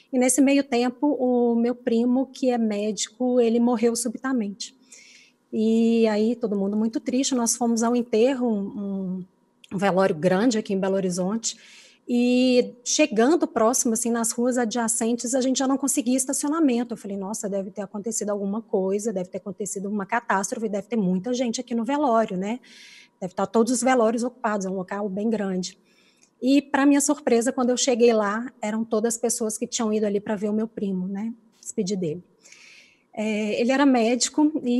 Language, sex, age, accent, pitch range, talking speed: Portuguese, female, 20-39, Brazilian, 210-245 Hz, 180 wpm